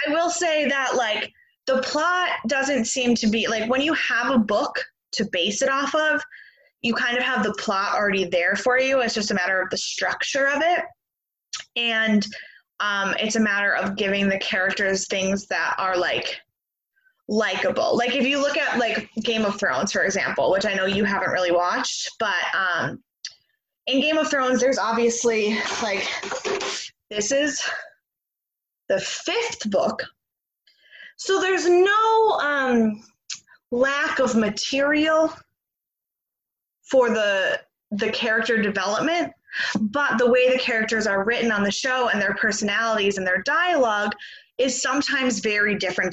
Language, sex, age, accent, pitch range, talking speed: English, female, 20-39, American, 205-275 Hz, 155 wpm